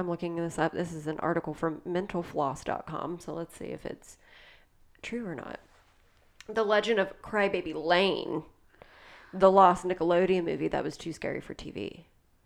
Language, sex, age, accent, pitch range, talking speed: English, female, 30-49, American, 170-195 Hz, 160 wpm